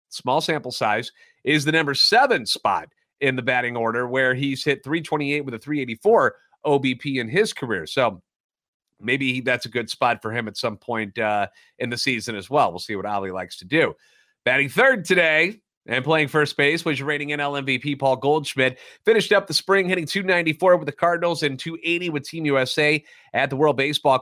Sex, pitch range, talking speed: male, 130-165 Hz, 195 wpm